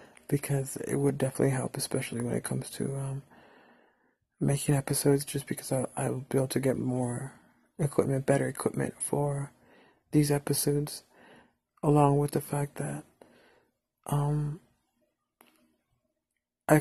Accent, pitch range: American, 130-150 Hz